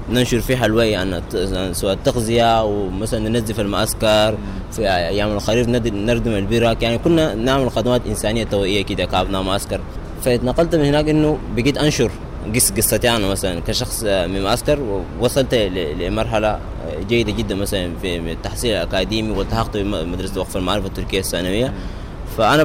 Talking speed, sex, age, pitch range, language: 130 wpm, male, 20-39, 95-120 Hz, Arabic